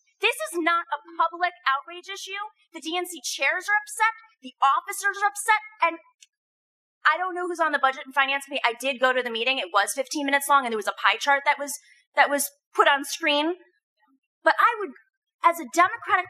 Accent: American